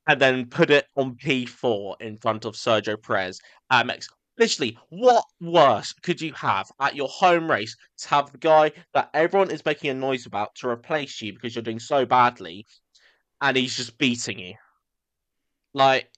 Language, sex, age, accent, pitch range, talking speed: English, male, 20-39, British, 105-140 Hz, 180 wpm